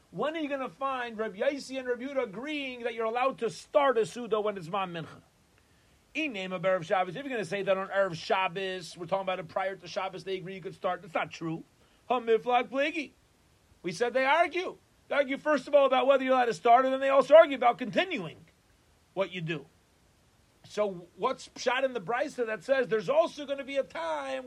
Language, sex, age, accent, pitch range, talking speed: English, male, 40-59, American, 170-250 Hz, 230 wpm